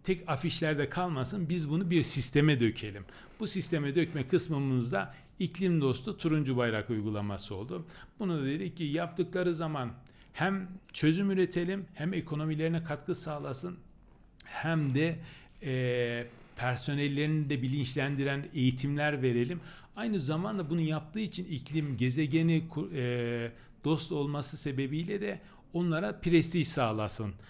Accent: native